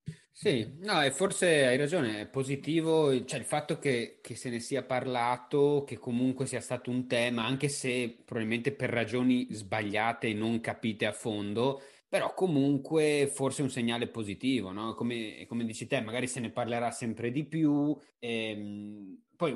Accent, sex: native, male